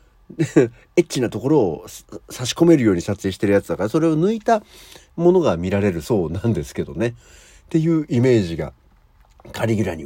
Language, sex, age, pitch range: Japanese, male, 60-79, 95-145 Hz